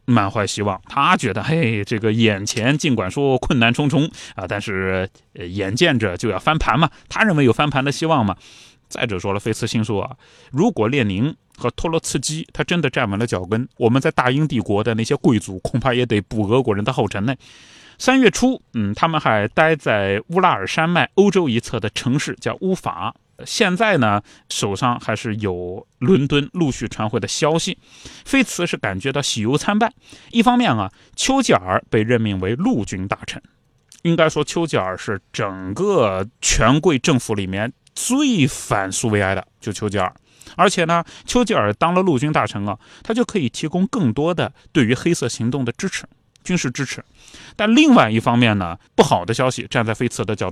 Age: 20-39